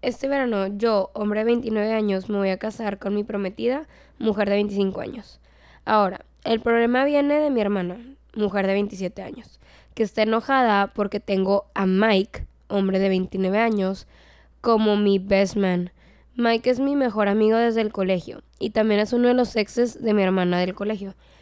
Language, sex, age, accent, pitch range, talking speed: Spanish, female, 10-29, Mexican, 200-235 Hz, 180 wpm